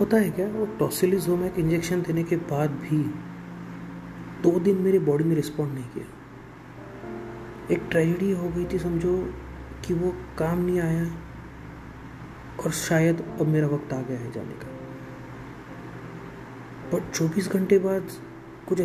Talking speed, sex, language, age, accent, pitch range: 140 wpm, male, Hindi, 30-49, native, 115-175 Hz